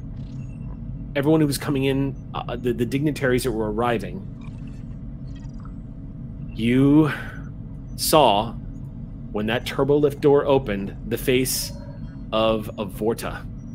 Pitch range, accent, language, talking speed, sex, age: 125-145 Hz, American, English, 110 wpm, male, 30-49